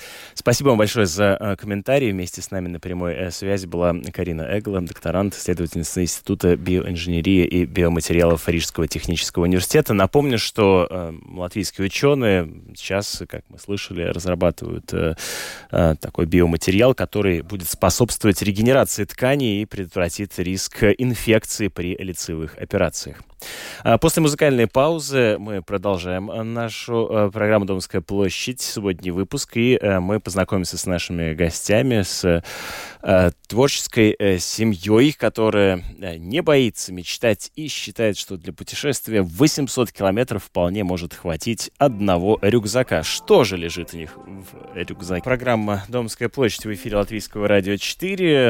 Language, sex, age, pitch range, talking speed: Russian, male, 20-39, 90-110 Hz, 125 wpm